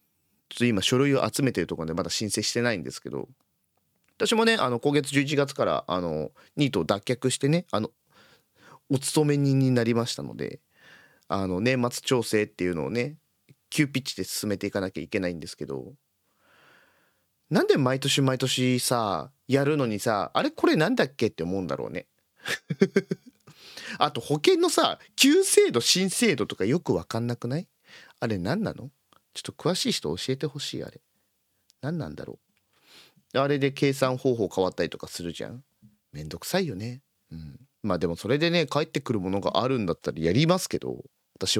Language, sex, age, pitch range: Japanese, male, 30-49, 100-155 Hz